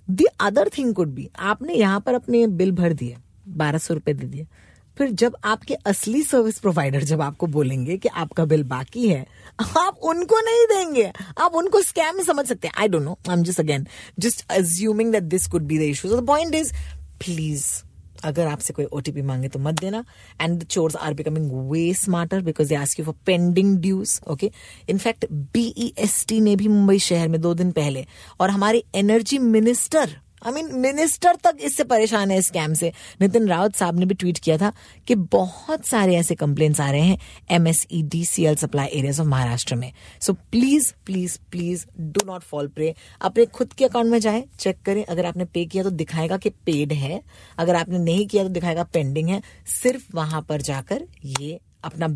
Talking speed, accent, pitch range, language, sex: 195 wpm, native, 155-220 Hz, Hindi, female